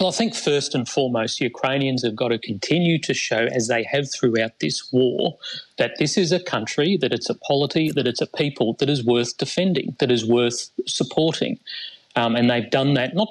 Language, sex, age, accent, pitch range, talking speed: English, male, 40-59, Australian, 120-140 Hz, 210 wpm